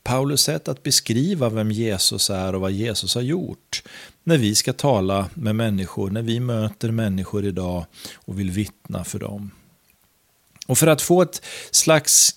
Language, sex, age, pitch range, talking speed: Swedish, male, 40-59, 95-125 Hz, 165 wpm